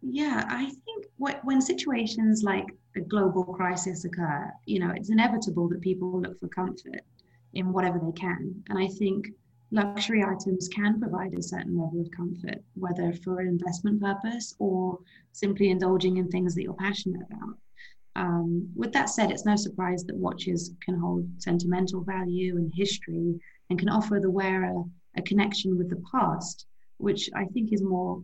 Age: 30-49